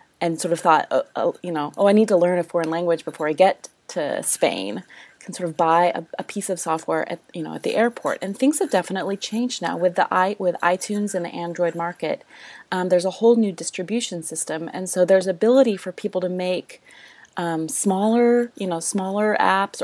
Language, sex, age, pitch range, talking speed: English, female, 30-49, 170-215 Hz, 220 wpm